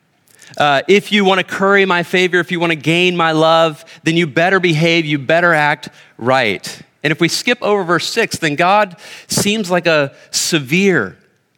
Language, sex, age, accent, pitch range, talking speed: English, male, 30-49, American, 150-185 Hz, 185 wpm